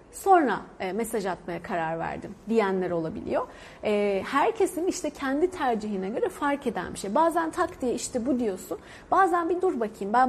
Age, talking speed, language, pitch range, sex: 30-49, 170 wpm, Turkish, 215-280 Hz, female